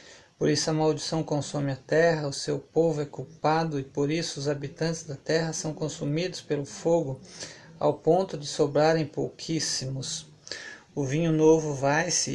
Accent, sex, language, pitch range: Brazilian, male, Portuguese, 145-165 Hz